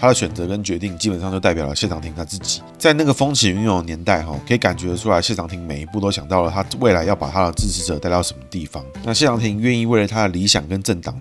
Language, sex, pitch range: Chinese, male, 85-120 Hz